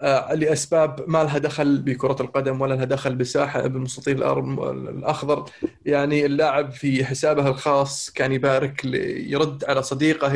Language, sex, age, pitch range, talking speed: Arabic, male, 20-39, 135-175 Hz, 135 wpm